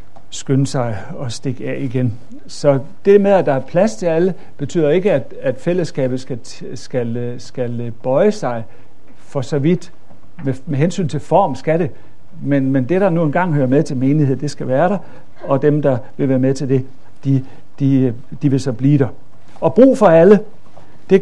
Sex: male